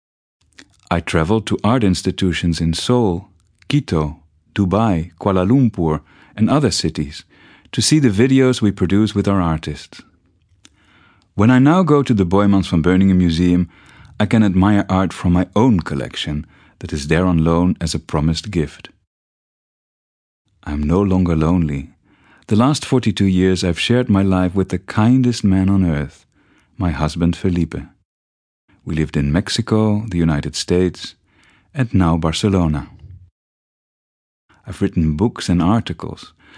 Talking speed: 145 wpm